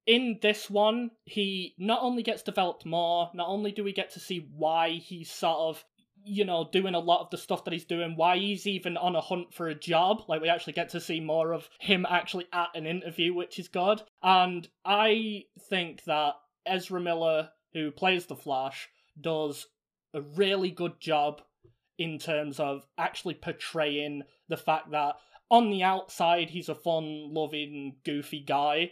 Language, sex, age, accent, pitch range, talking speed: English, male, 20-39, British, 150-180 Hz, 180 wpm